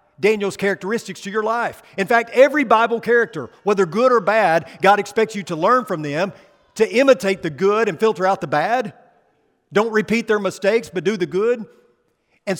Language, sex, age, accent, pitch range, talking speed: English, male, 50-69, American, 165-220 Hz, 185 wpm